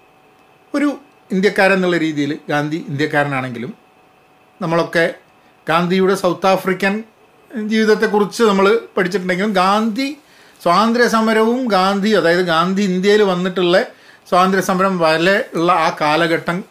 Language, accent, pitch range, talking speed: Malayalam, native, 145-205 Hz, 85 wpm